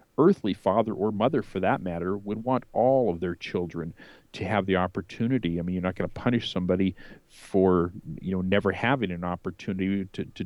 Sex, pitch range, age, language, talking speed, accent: male, 95-115 Hz, 50-69, English, 195 wpm, American